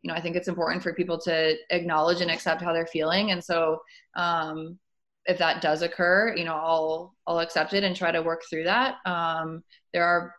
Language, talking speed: English, 215 wpm